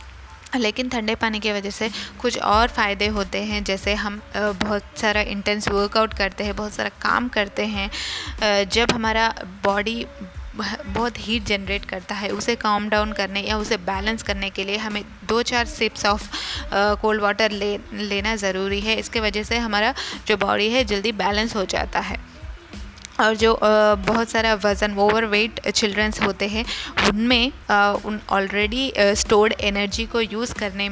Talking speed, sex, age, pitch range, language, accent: 160 wpm, female, 20-39, 200-220 Hz, Hindi, native